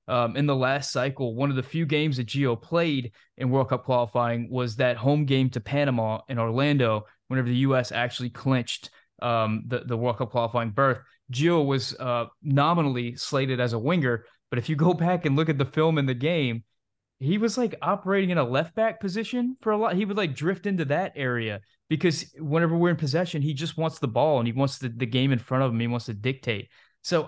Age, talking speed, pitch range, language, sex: 20-39, 225 wpm, 120-150 Hz, English, male